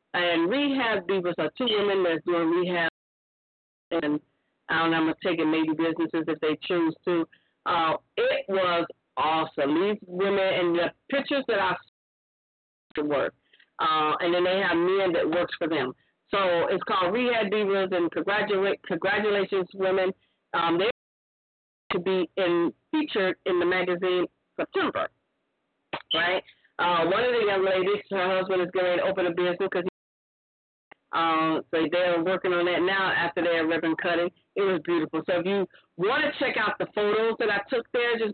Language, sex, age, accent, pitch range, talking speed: English, female, 40-59, American, 170-205 Hz, 170 wpm